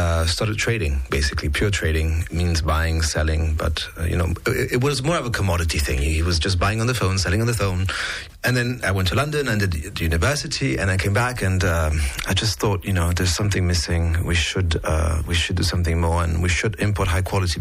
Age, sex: 30-49, male